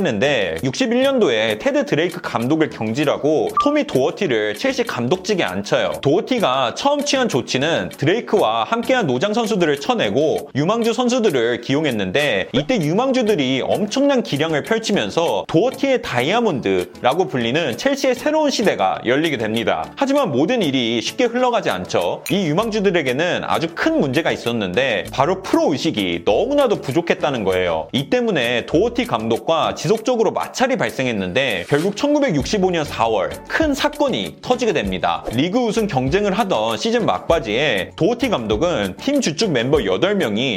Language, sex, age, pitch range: Korean, male, 30-49, 155-255 Hz